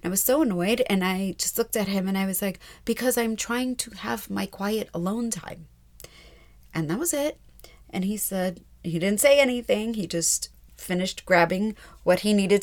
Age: 30-49